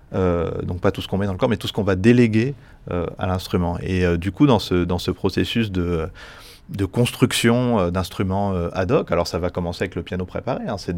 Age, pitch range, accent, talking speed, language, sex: 30-49, 85-105 Hz, French, 255 wpm, French, male